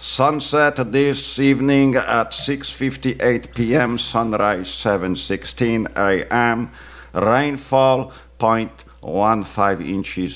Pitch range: 80-120 Hz